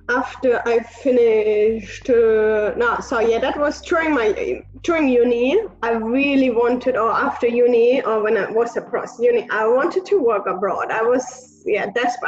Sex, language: female, English